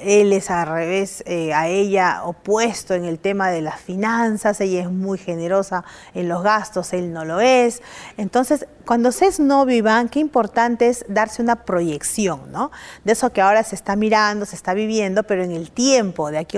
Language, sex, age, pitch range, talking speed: English, female, 40-59, 185-235 Hz, 195 wpm